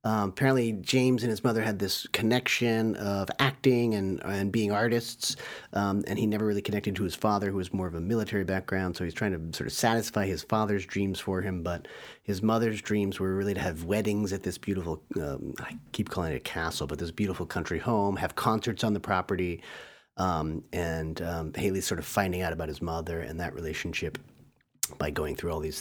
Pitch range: 90-115 Hz